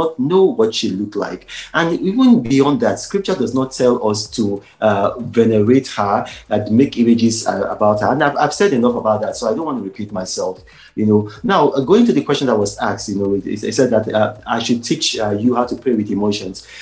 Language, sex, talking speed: English, male, 235 wpm